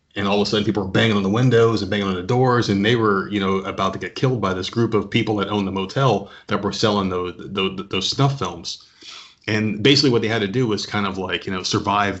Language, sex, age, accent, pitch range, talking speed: English, male, 30-49, American, 100-125 Hz, 270 wpm